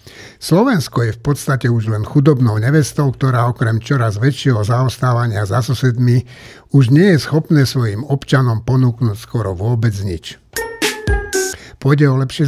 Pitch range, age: 120-145 Hz, 60-79